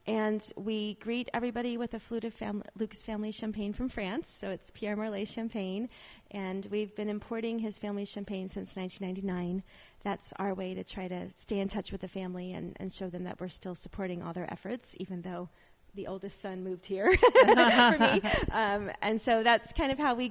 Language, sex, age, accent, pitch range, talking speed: English, female, 30-49, American, 185-220 Hz, 200 wpm